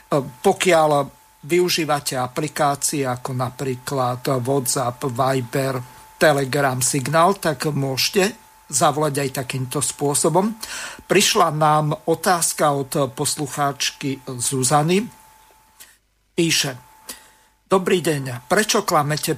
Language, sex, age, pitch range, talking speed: Slovak, male, 50-69, 140-165 Hz, 80 wpm